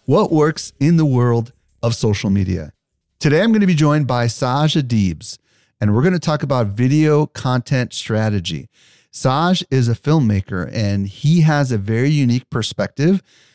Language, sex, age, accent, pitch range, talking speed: English, male, 40-59, American, 105-140 Hz, 165 wpm